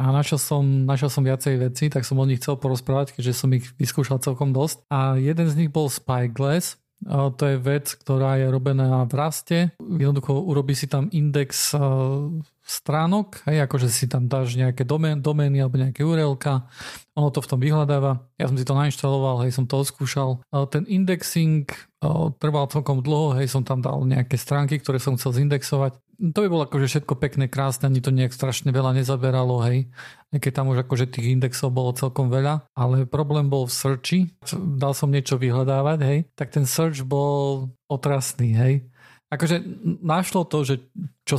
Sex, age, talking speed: male, 40-59, 175 wpm